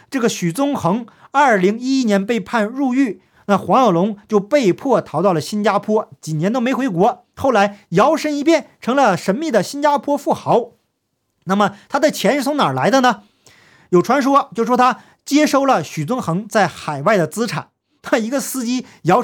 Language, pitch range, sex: Chinese, 185-245 Hz, male